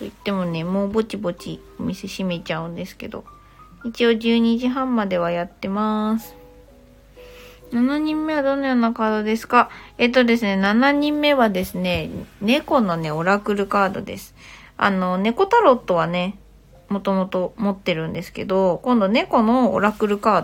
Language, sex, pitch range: Japanese, female, 185-250 Hz